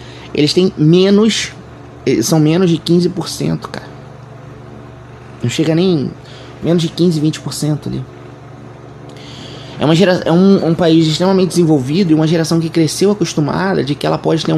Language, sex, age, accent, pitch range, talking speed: Portuguese, male, 20-39, Brazilian, 135-185 Hz, 150 wpm